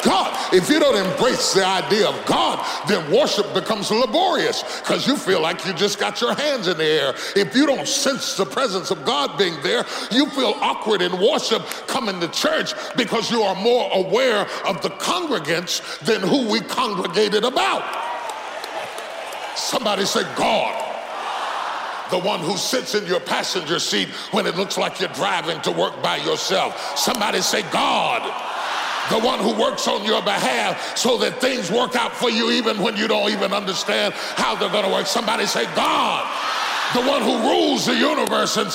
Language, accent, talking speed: English, American, 180 wpm